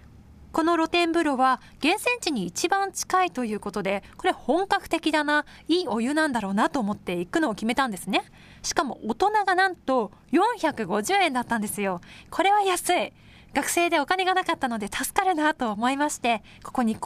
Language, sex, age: Japanese, female, 20-39